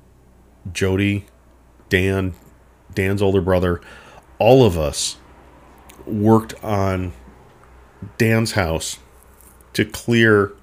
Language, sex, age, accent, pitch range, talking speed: English, male, 40-59, American, 85-110 Hz, 80 wpm